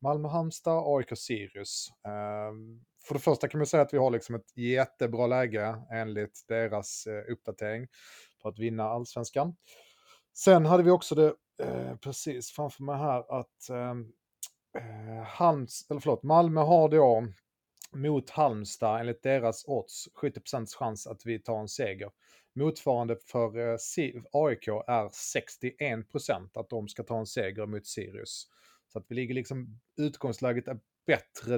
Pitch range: 110-135 Hz